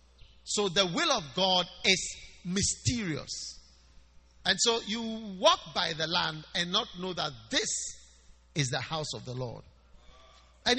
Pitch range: 180-260 Hz